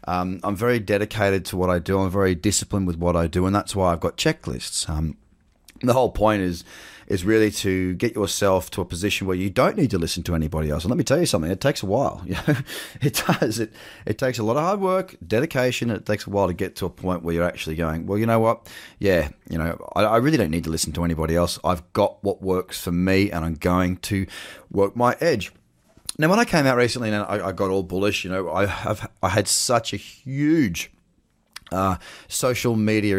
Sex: male